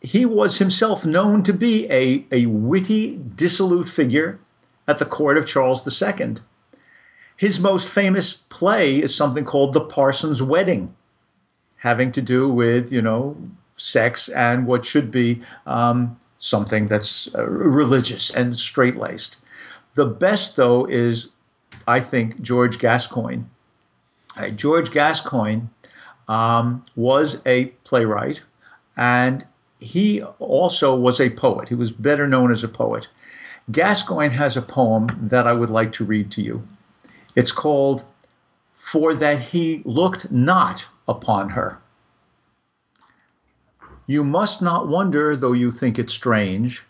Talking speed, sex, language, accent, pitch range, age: 130 wpm, male, English, American, 120-155 Hz, 50-69